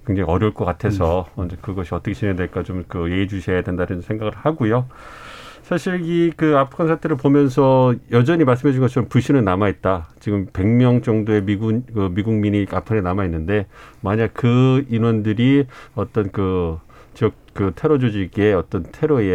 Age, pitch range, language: 40-59, 95-130 Hz, Korean